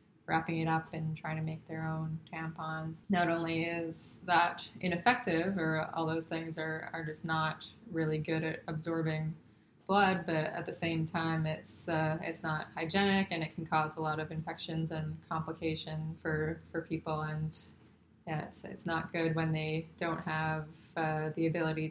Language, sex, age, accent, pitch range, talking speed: English, female, 20-39, American, 155-170 Hz, 175 wpm